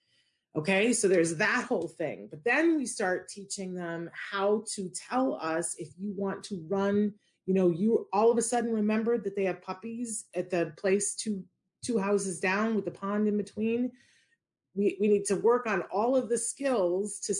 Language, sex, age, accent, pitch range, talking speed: English, female, 40-59, American, 180-220 Hz, 195 wpm